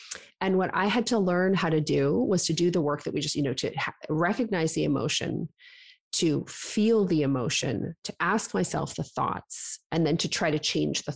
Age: 30-49